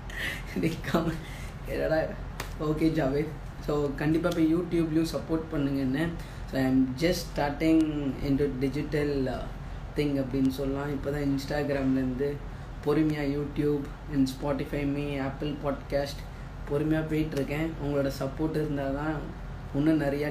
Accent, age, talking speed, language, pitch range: Indian, 20-39, 85 wpm, English, 135-155 Hz